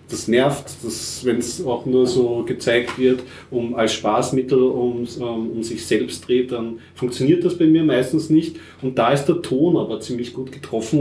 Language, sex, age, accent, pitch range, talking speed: German, male, 30-49, German, 115-145 Hz, 190 wpm